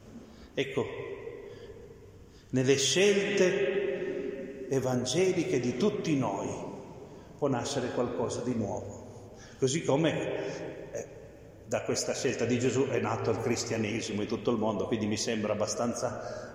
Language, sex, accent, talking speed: Italian, male, native, 115 wpm